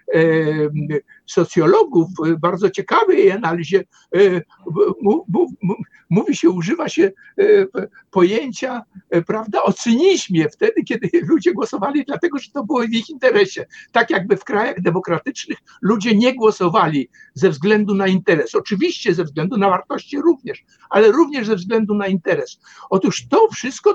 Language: Polish